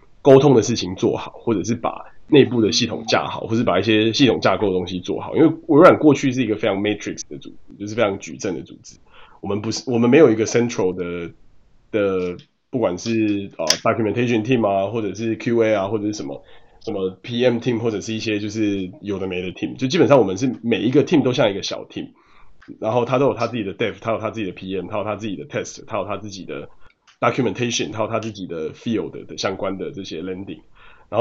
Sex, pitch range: male, 100-120 Hz